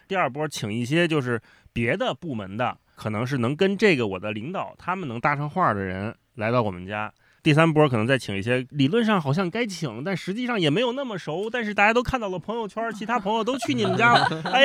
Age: 30-49